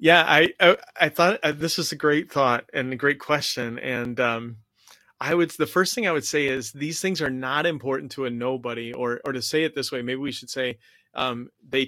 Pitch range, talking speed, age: 115-130 Hz, 235 wpm, 30-49